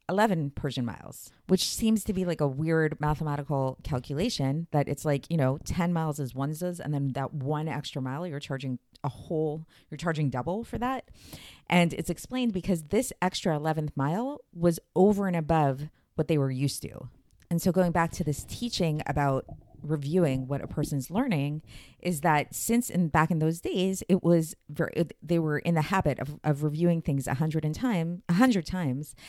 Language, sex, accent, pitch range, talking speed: English, female, American, 145-185 Hz, 190 wpm